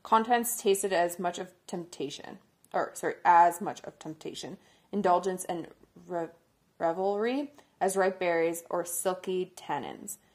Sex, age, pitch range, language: female, 20-39, 175-210 Hz, English